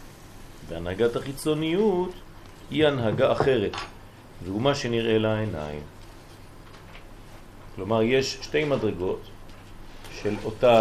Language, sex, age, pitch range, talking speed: French, male, 40-59, 100-115 Hz, 85 wpm